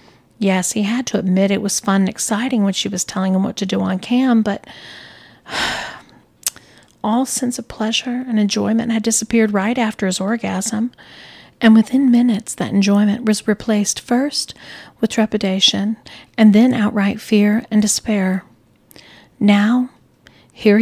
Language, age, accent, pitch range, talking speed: English, 40-59, American, 190-225 Hz, 145 wpm